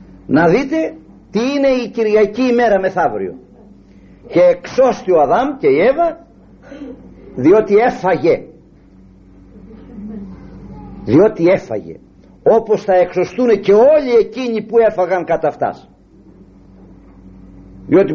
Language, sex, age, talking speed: Greek, male, 50-69, 100 wpm